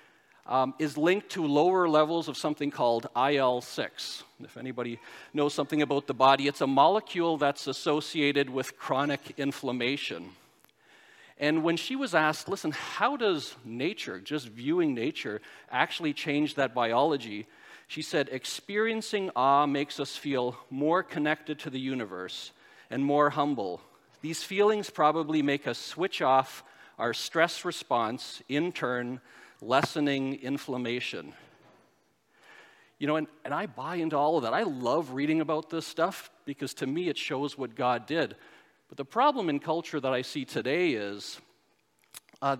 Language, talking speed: English, 150 wpm